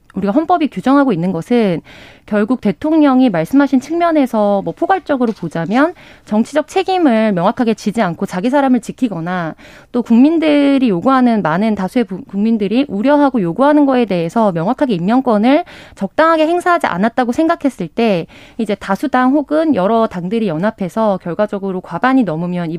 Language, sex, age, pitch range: Korean, female, 20-39, 195-280 Hz